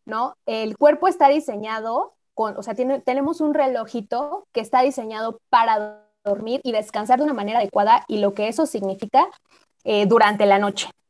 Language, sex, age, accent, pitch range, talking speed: Spanish, female, 20-39, Mexican, 205-260 Hz, 175 wpm